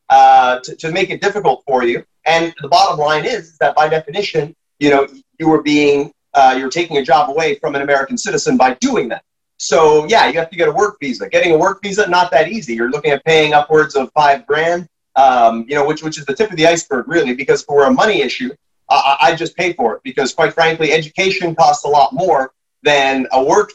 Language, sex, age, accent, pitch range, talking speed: English, male, 30-49, American, 140-175 Hz, 235 wpm